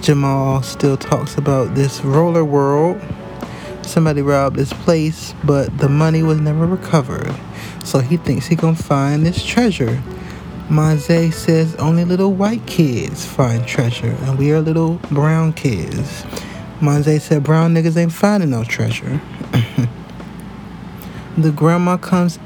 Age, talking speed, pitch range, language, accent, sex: 20-39, 135 wpm, 140-175 Hz, English, American, male